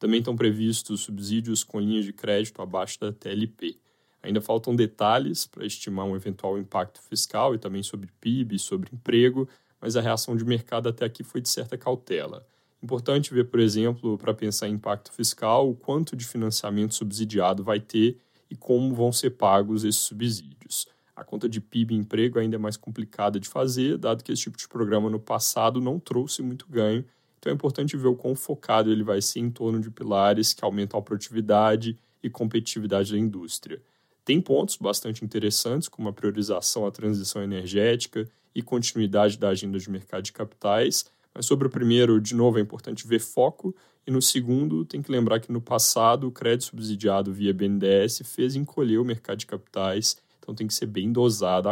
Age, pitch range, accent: 10-29, 105-120 Hz, Brazilian